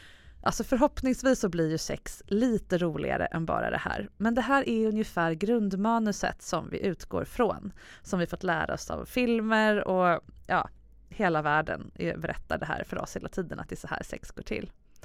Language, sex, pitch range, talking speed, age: English, female, 175-235 Hz, 185 wpm, 20-39